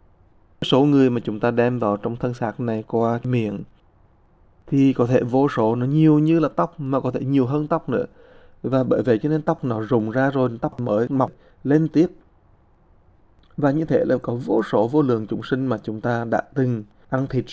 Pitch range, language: 110-135 Hz, English